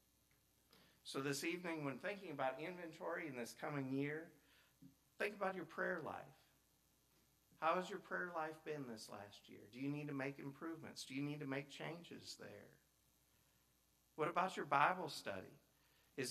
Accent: American